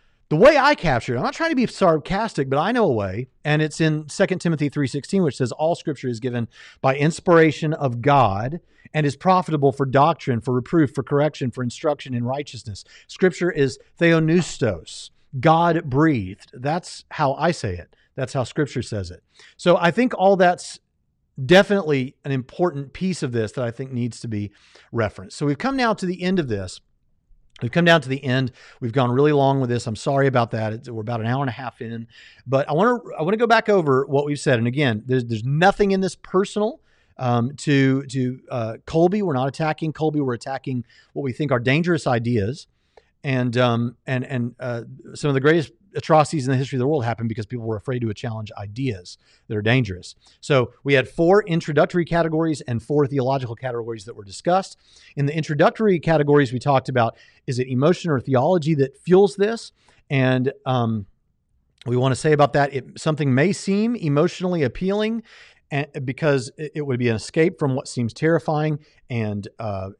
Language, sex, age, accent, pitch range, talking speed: English, male, 50-69, American, 125-165 Hz, 200 wpm